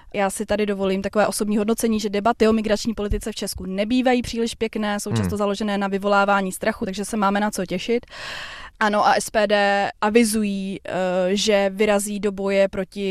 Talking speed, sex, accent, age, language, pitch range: 175 wpm, female, native, 20-39, Czech, 195-215 Hz